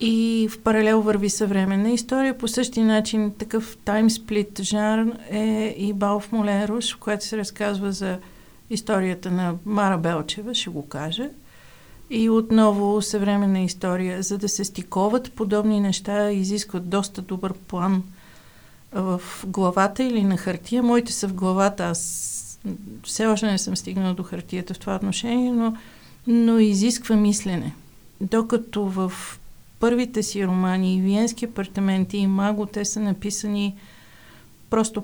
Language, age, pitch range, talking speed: Bulgarian, 50-69, 190-220 Hz, 135 wpm